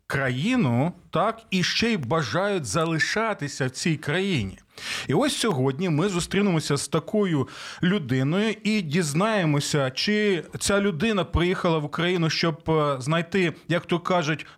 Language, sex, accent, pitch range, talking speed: Ukrainian, male, native, 130-185 Hz, 130 wpm